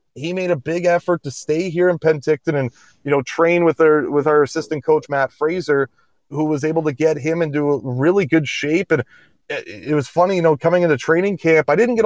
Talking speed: 225 wpm